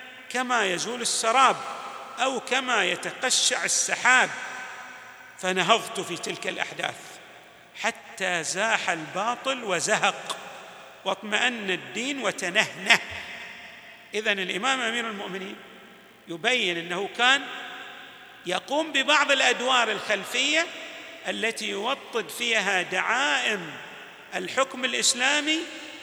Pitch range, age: 195-255 Hz, 50-69